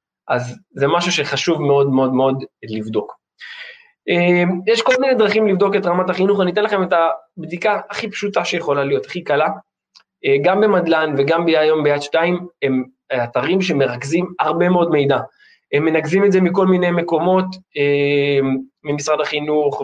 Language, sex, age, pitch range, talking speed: Hebrew, male, 20-39, 145-200 Hz, 150 wpm